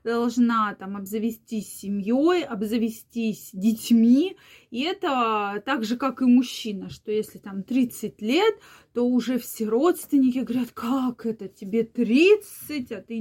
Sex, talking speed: female, 130 wpm